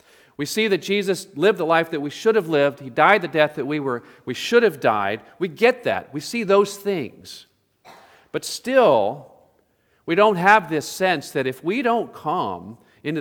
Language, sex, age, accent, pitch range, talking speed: English, male, 40-59, American, 115-190 Hz, 195 wpm